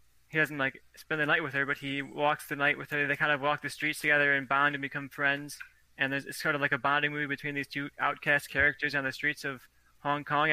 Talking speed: 270 wpm